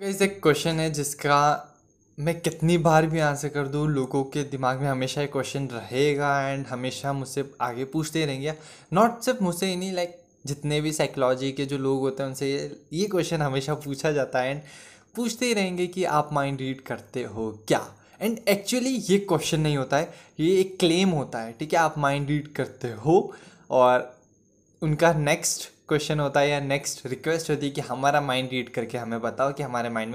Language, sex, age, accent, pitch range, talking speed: Hindi, male, 10-29, native, 130-155 Hz, 200 wpm